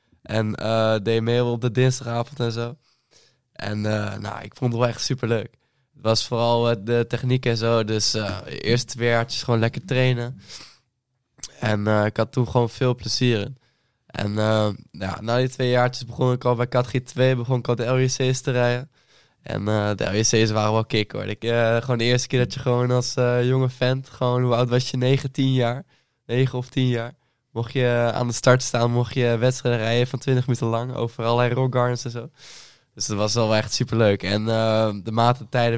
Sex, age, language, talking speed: male, 10-29, Dutch, 215 wpm